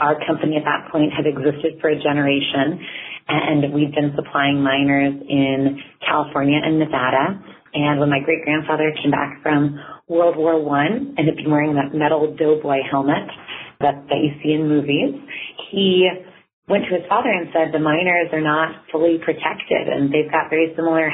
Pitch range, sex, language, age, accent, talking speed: 145-170 Hz, female, English, 30-49, American, 175 wpm